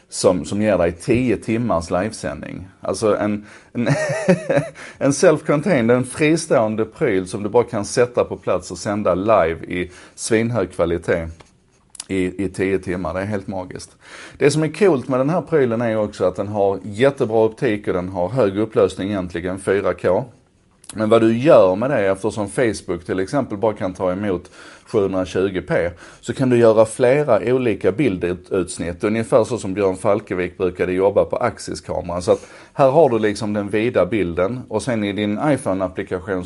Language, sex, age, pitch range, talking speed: Swedish, male, 30-49, 90-110 Hz, 170 wpm